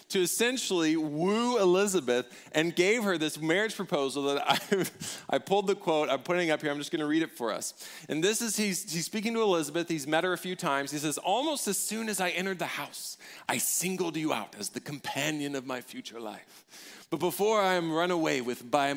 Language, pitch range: English, 140-195 Hz